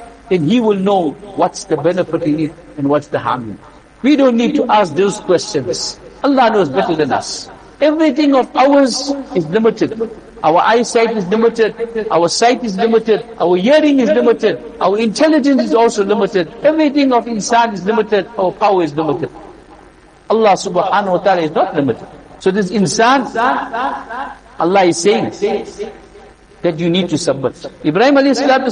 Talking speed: 160 wpm